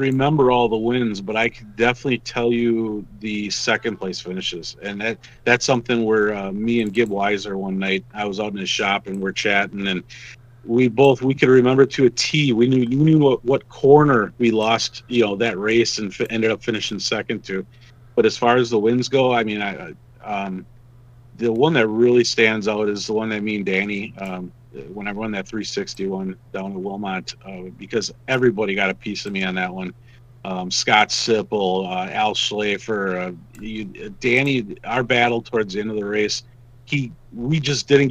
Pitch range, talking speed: 100-120 Hz, 205 wpm